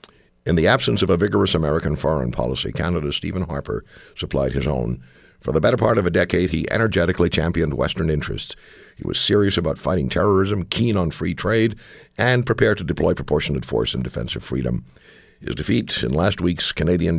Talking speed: 185 wpm